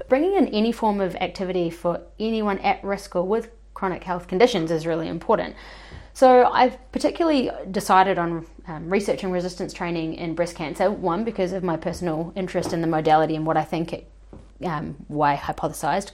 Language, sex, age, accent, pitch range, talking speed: English, female, 20-39, Australian, 160-195 Hz, 180 wpm